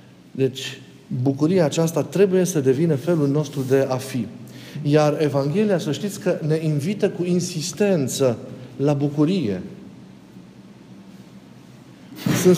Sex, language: male, Romanian